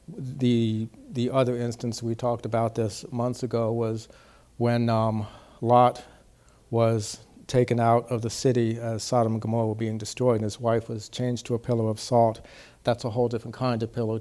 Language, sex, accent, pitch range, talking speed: English, male, American, 110-125 Hz, 185 wpm